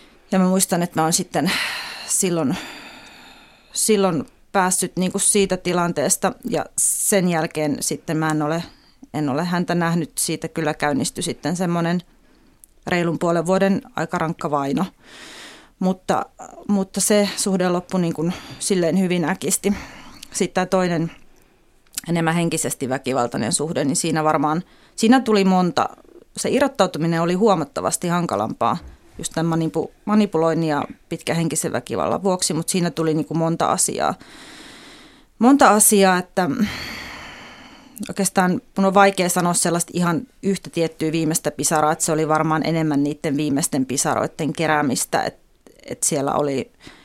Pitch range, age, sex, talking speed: 160-200 Hz, 30-49, female, 135 wpm